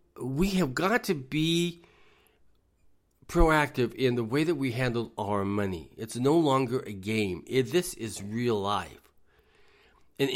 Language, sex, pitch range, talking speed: English, male, 100-140 Hz, 140 wpm